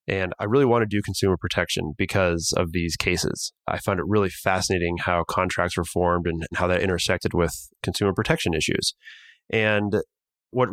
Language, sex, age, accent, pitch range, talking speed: English, male, 20-39, American, 90-105 Hz, 175 wpm